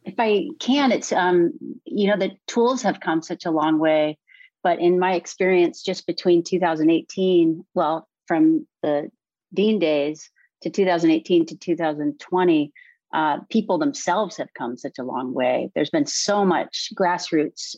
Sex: female